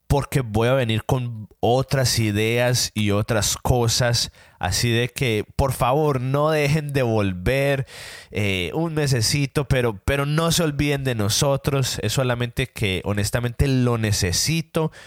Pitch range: 105-135 Hz